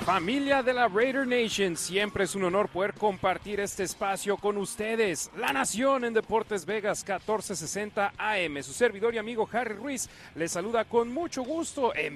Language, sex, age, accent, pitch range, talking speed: Spanish, male, 40-59, Mexican, 160-210 Hz, 170 wpm